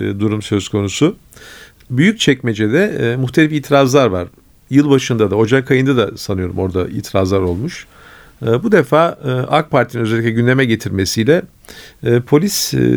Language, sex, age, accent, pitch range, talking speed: Turkish, male, 50-69, native, 115-150 Hz, 120 wpm